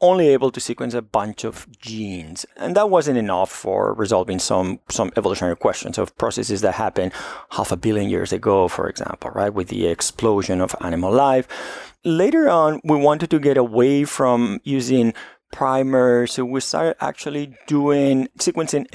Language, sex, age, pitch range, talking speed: English, male, 30-49, 110-145 Hz, 165 wpm